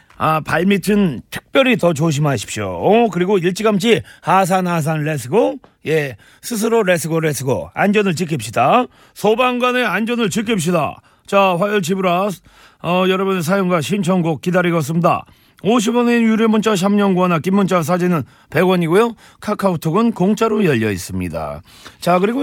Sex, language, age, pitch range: male, Korean, 40-59, 165-215 Hz